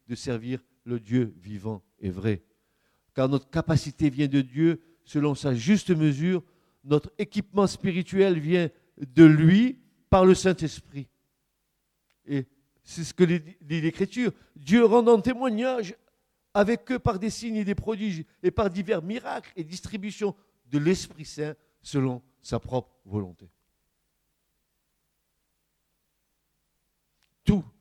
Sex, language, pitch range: male, French, 120-185 Hz